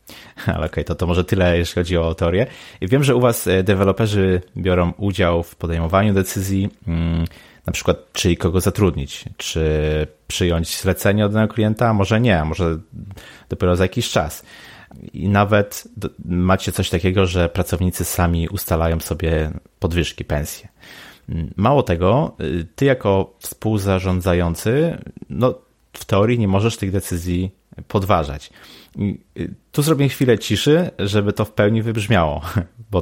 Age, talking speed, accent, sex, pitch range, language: 30-49, 135 wpm, native, male, 85-100 Hz, Polish